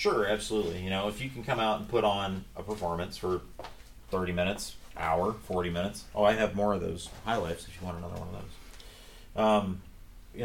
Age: 30-49